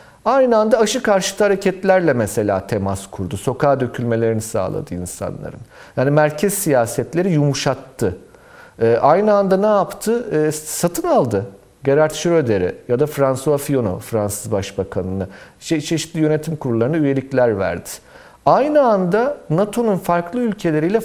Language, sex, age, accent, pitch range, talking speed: Turkish, male, 40-59, native, 120-180 Hz, 120 wpm